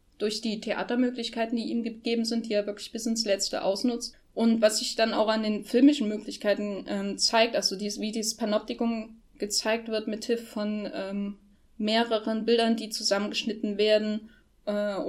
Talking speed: 165 wpm